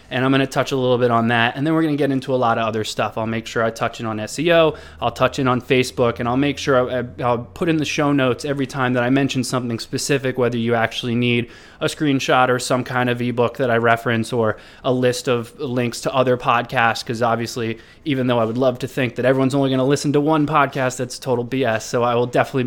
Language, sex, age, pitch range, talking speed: English, male, 20-39, 120-140 Hz, 260 wpm